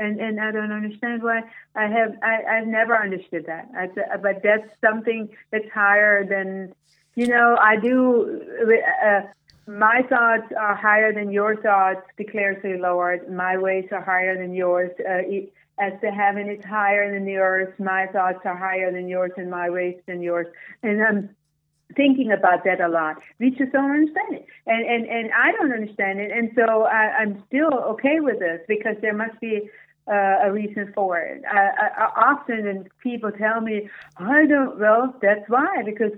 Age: 40-59